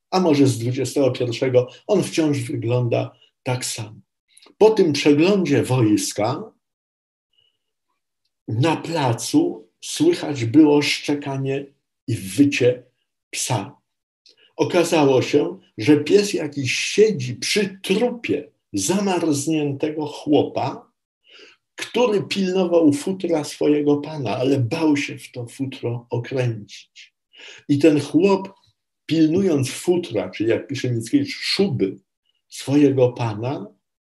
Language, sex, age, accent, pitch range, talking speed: Polish, male, 50-69, native, 125-160 Hz, 95 wpm